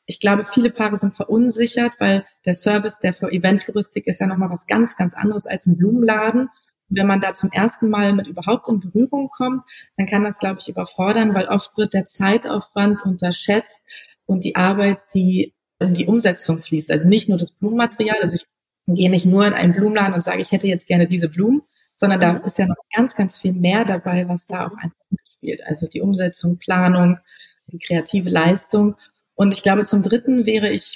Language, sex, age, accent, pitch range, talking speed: German, female, 30-49, German, 185-220 Hz, 200 wpm